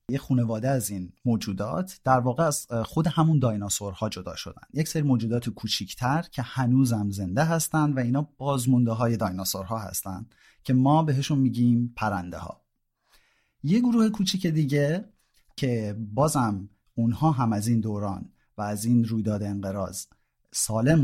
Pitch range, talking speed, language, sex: 105-145 Hz, 150 wpm, Persian, male